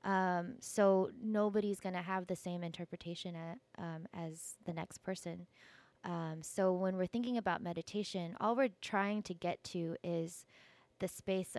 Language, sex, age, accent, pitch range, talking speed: English, female, 20-39, American, 185-220 Hz, 155 wpm